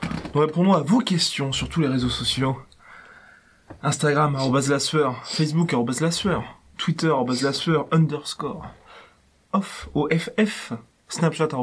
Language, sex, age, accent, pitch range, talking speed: French, male, 20-39, French, 135-180 Hz, 130 wpm